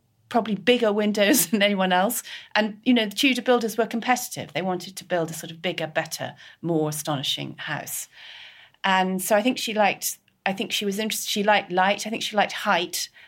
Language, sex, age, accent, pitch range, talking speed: English, female, 40-59, British, 160-205 Hz, 205 wpm